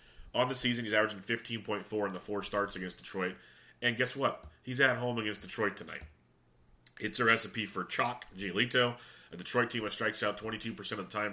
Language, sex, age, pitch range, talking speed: English, male, 30-49, 95-115 Hz, 215 wpm